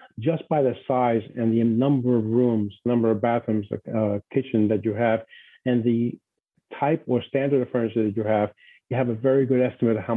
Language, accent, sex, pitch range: English, American, male, 115-135 Hz